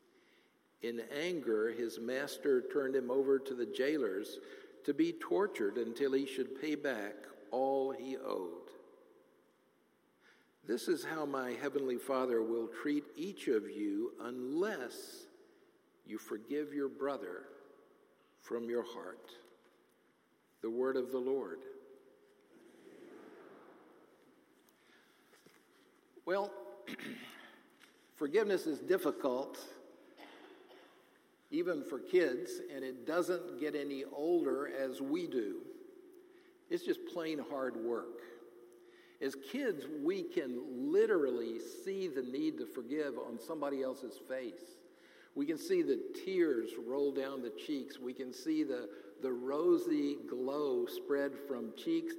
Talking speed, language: 115 wpm, English